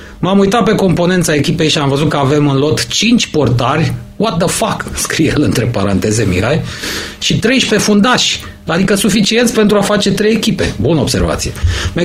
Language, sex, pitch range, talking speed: Romanian, male, 115-195 Hz, 175 wpm